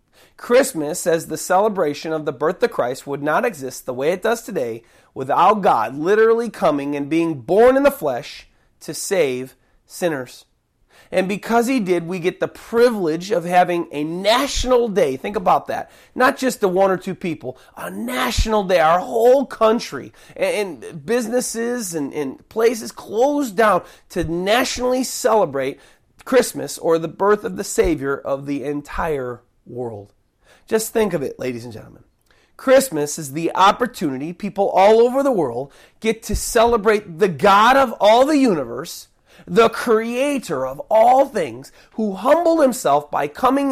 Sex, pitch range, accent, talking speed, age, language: male, 165-255 Hz, American, 155 wpm, 30-49, English